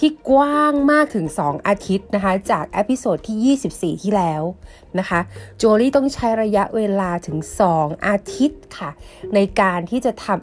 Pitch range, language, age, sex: 170-235 Hz, Thai, 30-49, female